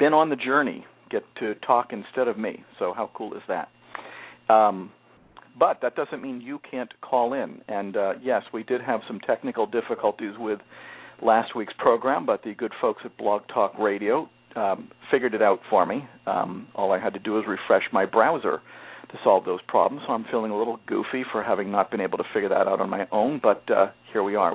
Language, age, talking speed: English, 50-69, 215 wpm